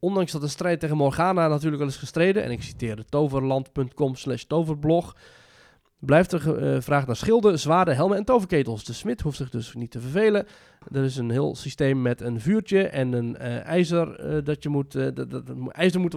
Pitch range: 130-175 Hz